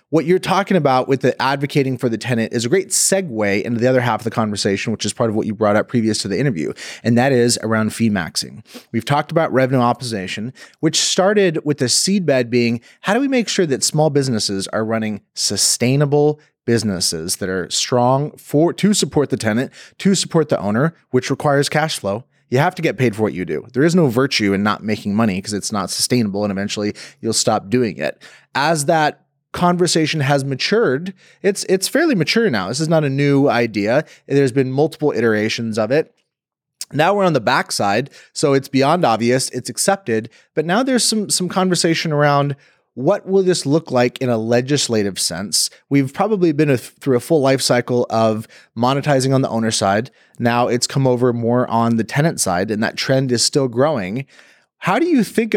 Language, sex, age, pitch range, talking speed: English, male, 30-49, 115-160 Hz, 205 wpm